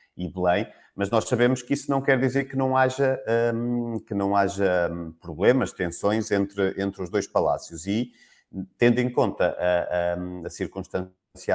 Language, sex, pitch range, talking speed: Portuguese, male, 95-120 Hz, 150 wpm